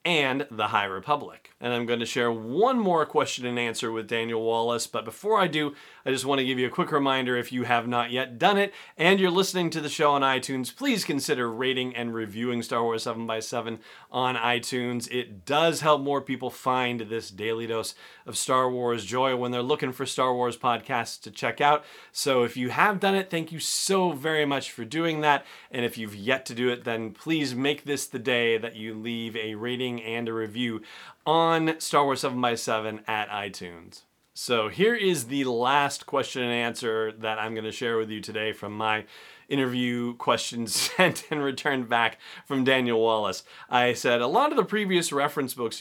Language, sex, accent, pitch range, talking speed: English, male, American, 115-145 Hz, 205 wpm